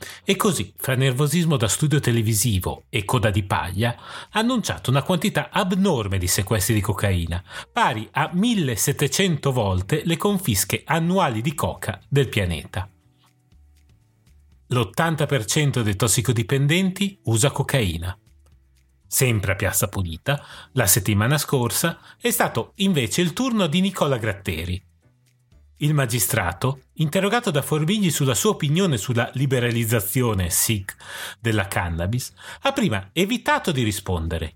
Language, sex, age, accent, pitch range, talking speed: Italian, male, 30-49, native, 105-155 Hz, 120 wpm